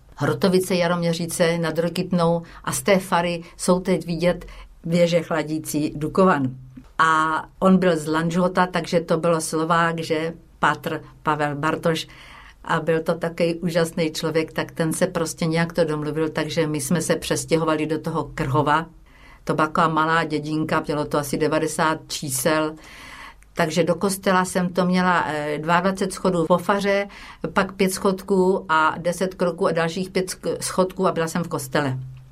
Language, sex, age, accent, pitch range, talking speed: Czech, female, 50-69, native, 155-180 Hz, 150 wpm